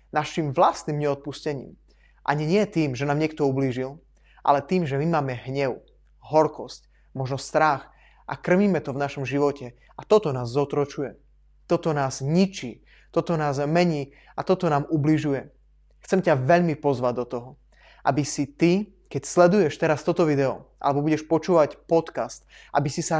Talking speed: 155 wpm